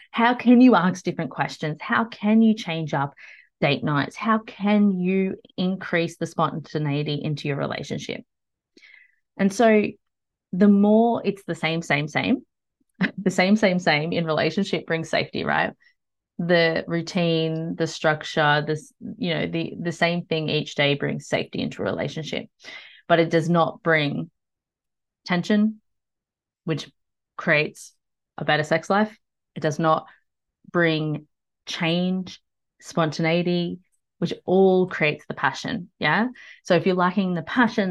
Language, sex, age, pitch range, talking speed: English, female, 30-49, 160-205 Hz, 140 wpm